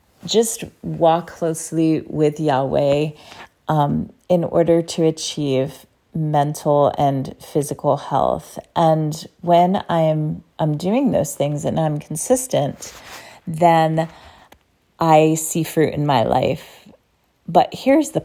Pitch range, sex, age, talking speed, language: 155-175 Hz, female, 30-49, 110 wpm, English